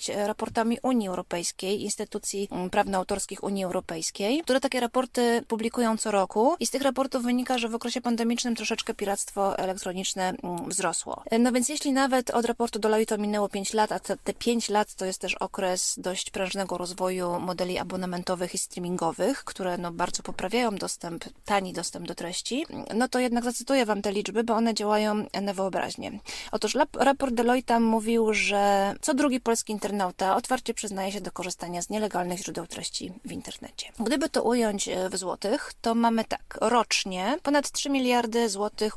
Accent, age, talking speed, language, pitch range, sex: native, 20-39, 160 wpm, Polish, 190-245 Hz, female